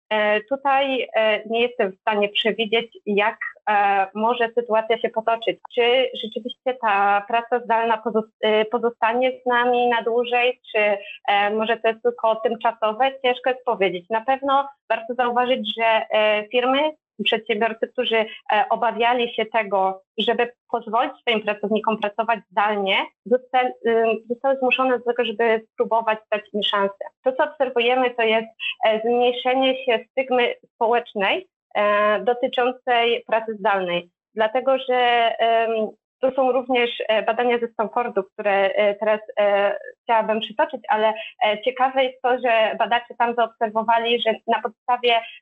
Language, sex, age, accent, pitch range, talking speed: Polish, female, 30-49, native, 215-245 Hz, 120 wpm